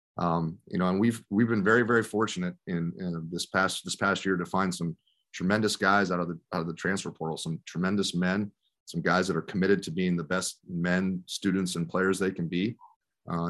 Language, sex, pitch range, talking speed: English, male, 85-105 Hz, 220 wpm